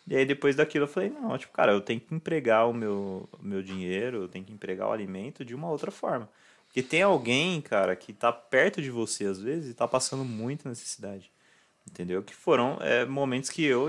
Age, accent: 20-39, Brazilian